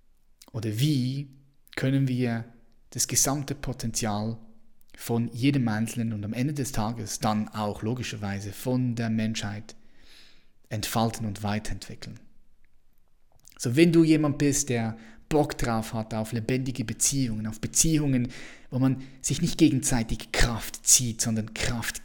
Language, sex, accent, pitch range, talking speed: German, male, German, 110-130 Hz, 130 wpm